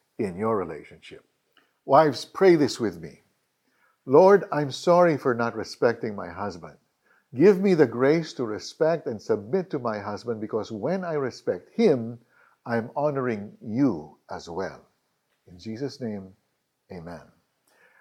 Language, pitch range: Filipino, 120-175 Hz